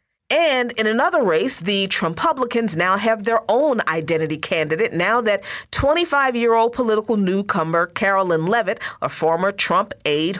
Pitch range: 180-270 Hz